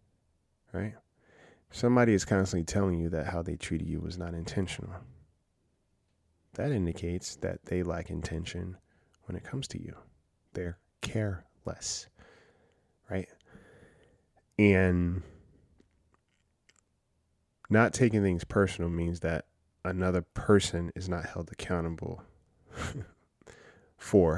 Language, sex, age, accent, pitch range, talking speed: English, male, 20-39, American, 85-100 Hz, 105 wpm